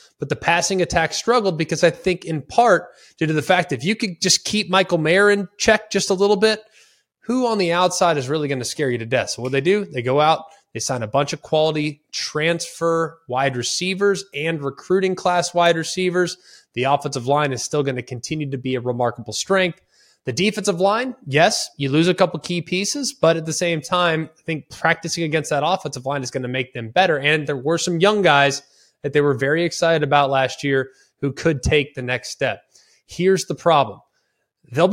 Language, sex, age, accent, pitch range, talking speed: English, male, 20-39, American, 140-180 Hz, 215 wpm